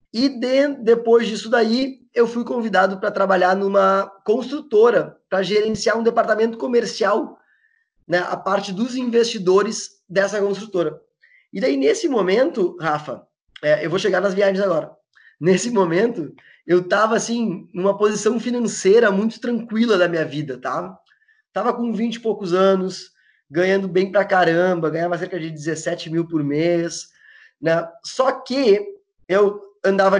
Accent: Brazilian